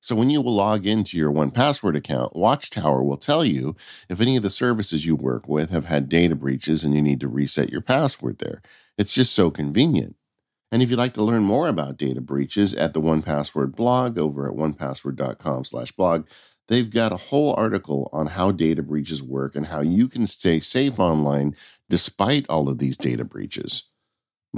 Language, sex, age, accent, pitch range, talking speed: English, male, 50-69, American, 75-100 Hz, 200 wpm